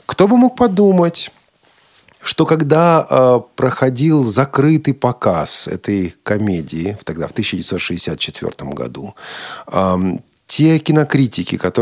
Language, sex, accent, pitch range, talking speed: Russian, male, native, 105-155 Hz, 95 wpm